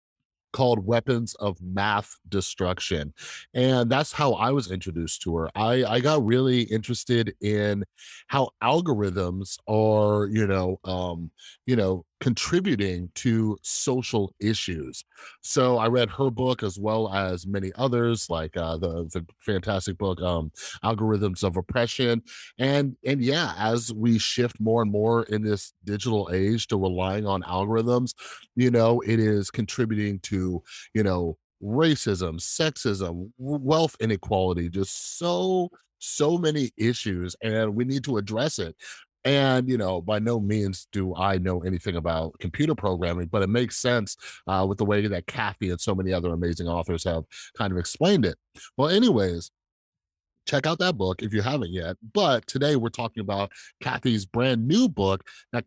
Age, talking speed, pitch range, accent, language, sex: 30-49, 155 wpm, 95-125 Hz, American, English, male